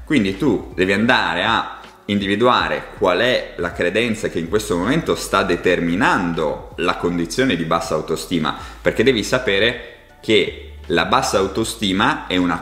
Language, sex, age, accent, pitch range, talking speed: Italian, male, 30-49, native, 85-130 Hz, 145 wpm